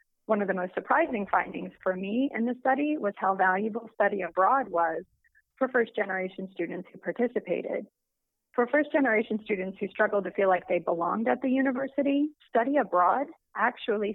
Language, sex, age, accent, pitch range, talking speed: English, female, 30-49, American, 185-245 Hz, 160 wpm